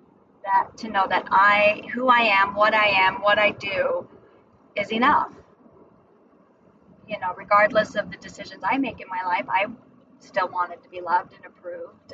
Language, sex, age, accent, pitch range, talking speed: English, female, 30-49, American, 200-280 Hz, 175 wpm